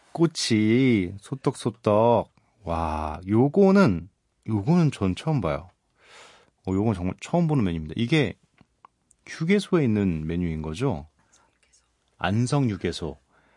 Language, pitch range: Korean, 90-125 Hz